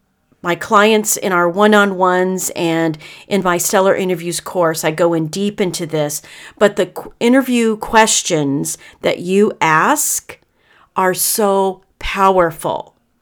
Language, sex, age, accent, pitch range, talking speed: English, female, 40-59, American, 175-220 Hz, 125 wpm